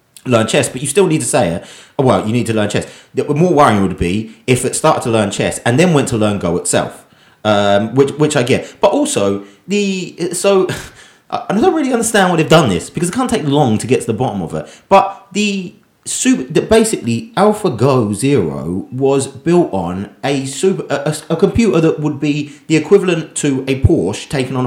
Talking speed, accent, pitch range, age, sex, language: 215 wpm, British, 125-185 Hz, 30-49, male, English